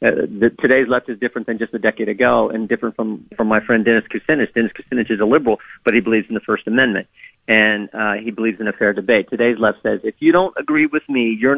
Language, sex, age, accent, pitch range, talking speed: English, male, 40-59, American, 115-150 Hz, 250 wpm